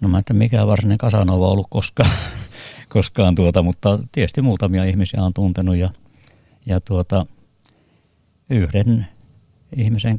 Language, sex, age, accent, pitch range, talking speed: Finnish, male, 50-69, native, 95-110 Hz, 125 wpm